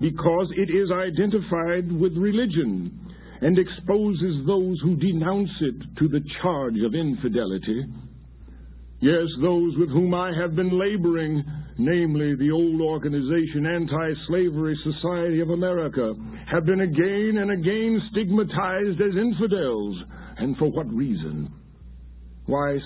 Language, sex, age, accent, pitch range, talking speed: English, male, 60-79, American, 105-170 Hz, 120 wpm